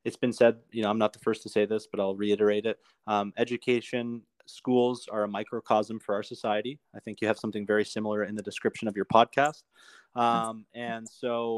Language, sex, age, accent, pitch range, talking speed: English, male, 30-49, American, 105-120 Hz, 210 wpm